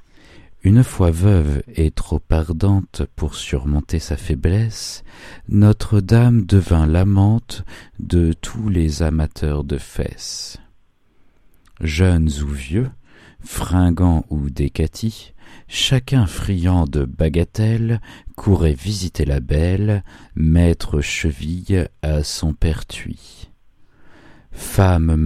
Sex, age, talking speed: male, 50-69, 95 wpm